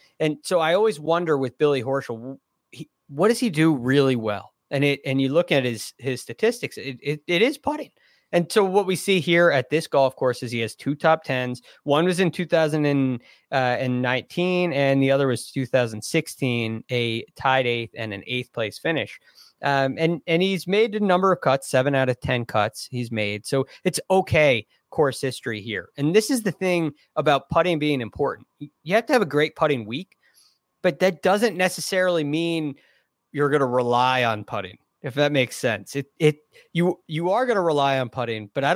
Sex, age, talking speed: male, 20-39, 195 wpm